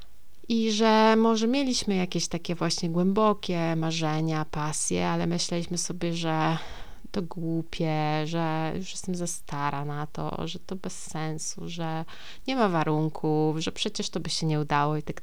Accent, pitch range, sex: native, 160-190 Hz, female